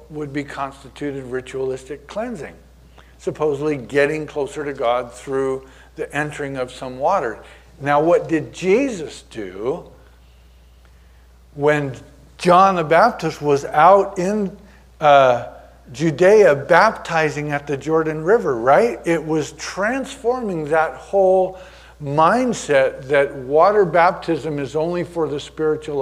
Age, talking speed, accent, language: 50-69, 115 wpm, American, English